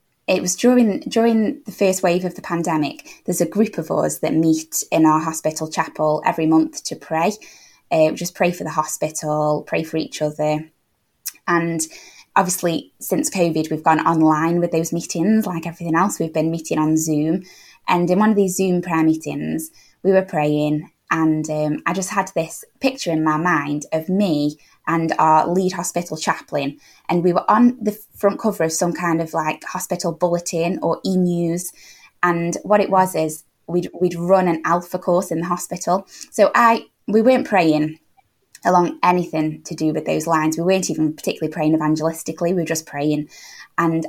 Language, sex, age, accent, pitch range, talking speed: English, female, 20-39, British, 155-185 Hz, 180 wpm